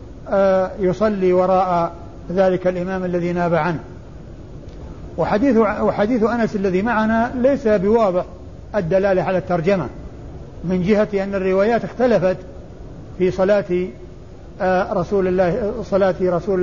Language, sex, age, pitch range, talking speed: Arabic, male, 50-69, 180-210 Hz, 95 wpm